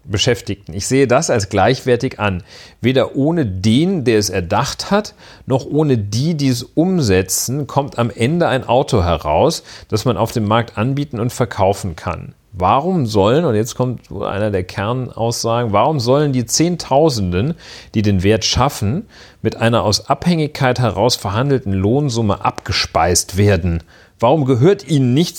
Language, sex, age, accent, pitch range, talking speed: German, male, 40-59, German, 100-130 Hz, 150 wpm